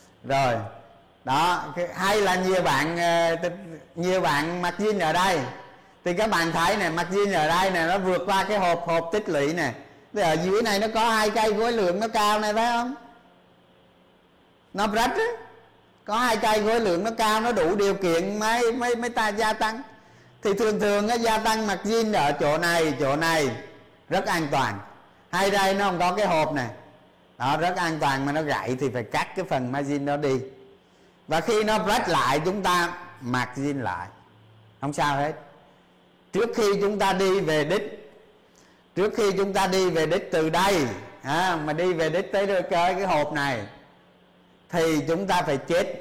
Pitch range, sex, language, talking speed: 145-205 Hz, male, Vietnamese, 190 wpm